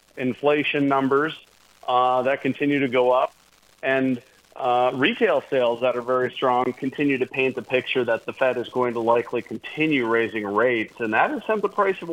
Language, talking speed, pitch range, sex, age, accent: English, 190 wpm, 125-150 Hz, male, 40-59, American